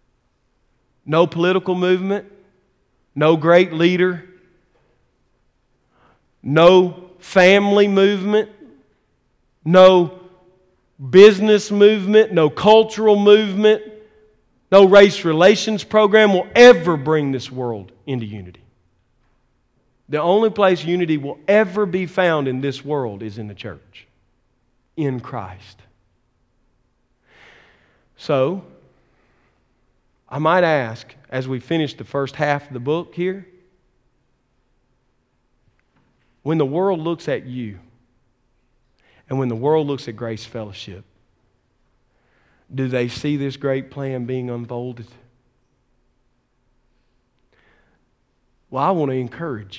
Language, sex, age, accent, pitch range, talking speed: English, male, 40-59, American, 120-180 Hz, 100 wpm